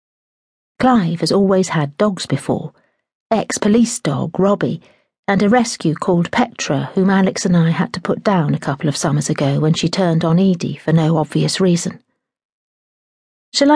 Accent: British